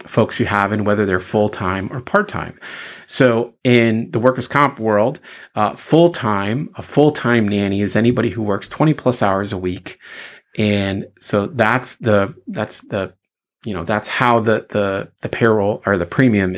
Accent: American